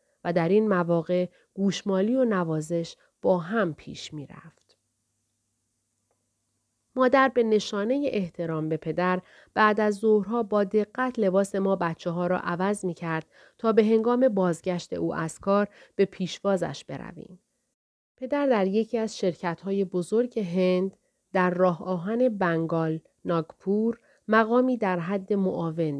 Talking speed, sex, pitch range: 135 wpm, female, 170-220 Hz